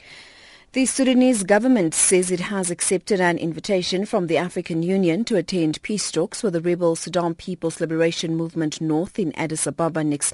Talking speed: 170 wpm